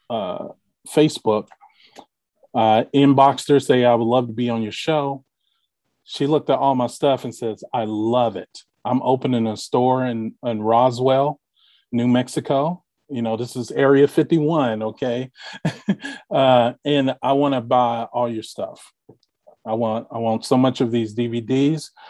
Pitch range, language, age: 110-130 Hz, English, 30-49